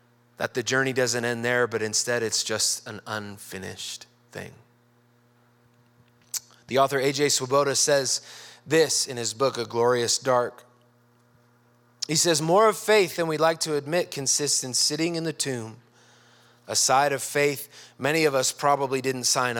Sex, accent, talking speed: male, American, 155 wpm